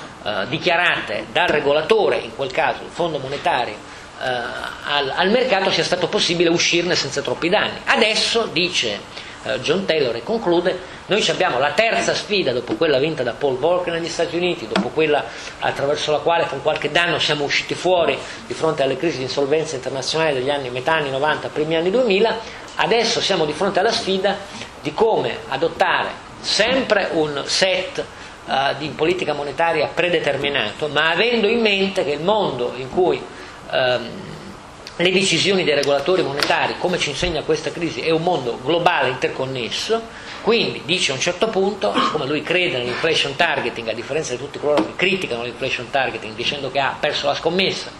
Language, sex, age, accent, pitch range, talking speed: Italian, male, 40-59, native, 145-195 Hz, 170 wpm